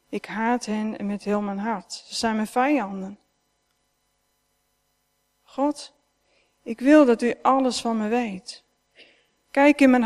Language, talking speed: Dutch, 135 wpm